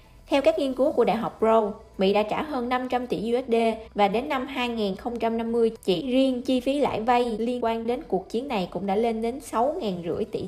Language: Vietnamese